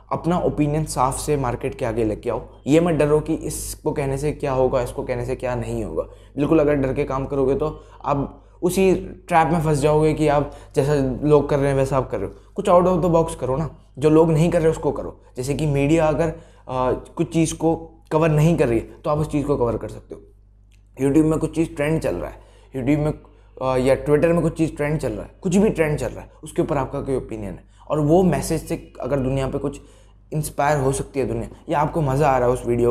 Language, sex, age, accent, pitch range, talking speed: Hindi, male, 20-39, native, 120-155 Hz, 250 wpm